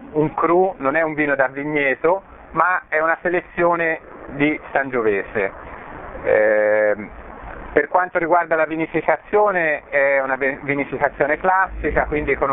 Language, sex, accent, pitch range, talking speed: Italian, male, native, 125-160 Hz, 125 wpm